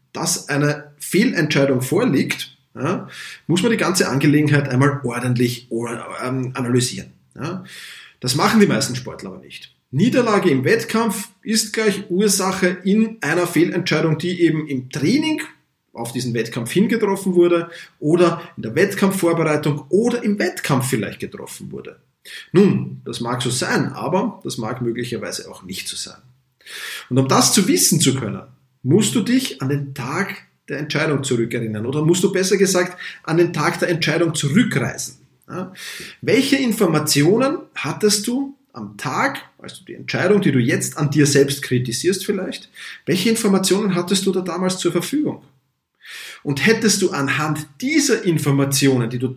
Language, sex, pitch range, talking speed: German, male, 135-195 Hz, 145 wpm